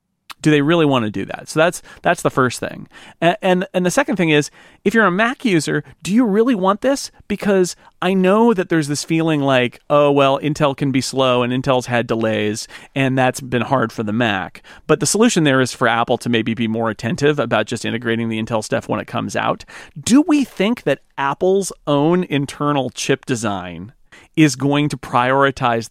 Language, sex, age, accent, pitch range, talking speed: English, male, 40-59, American, 120-160 Hz, 210 wpm